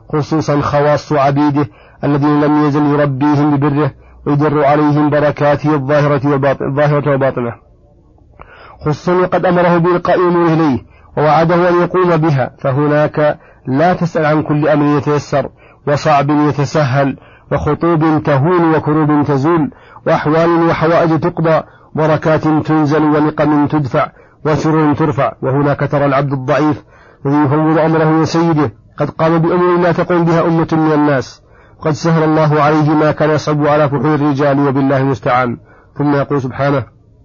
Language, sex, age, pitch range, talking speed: Arabic, male, 40-59, 145-160 Hz, 120 wpm